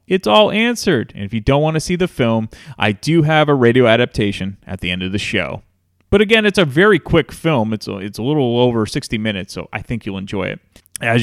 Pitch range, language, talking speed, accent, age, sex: 115-190 Hz, English, 240 wpm, American, 30-49, male